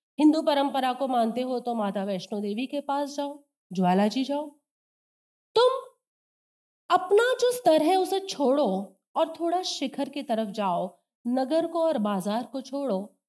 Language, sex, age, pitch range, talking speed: Hindi, female, 40-59, 215-310 Hz, 150 wpm